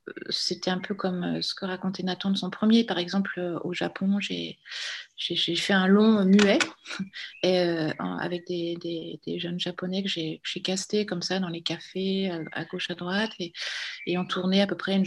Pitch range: 180-205 Hz